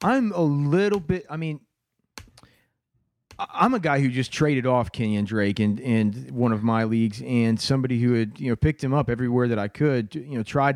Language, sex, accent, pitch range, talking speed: English, male, American, 120-150 Hz, 200 wpm